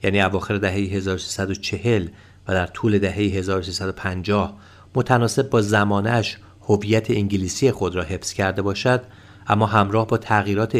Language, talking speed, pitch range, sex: Persian, 130 wpm, 95-110 Hz, male